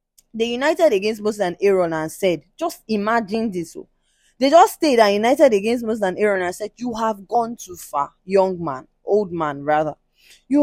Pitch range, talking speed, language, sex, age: 185-255 Hz, 190 wpm, English, female, 20-39